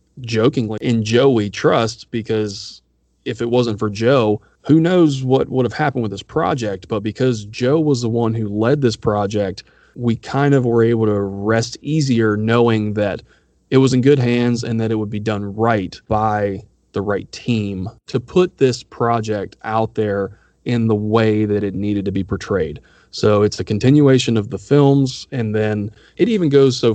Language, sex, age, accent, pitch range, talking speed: English, male, 30-49, American, 105-125 Hz, 185 wpm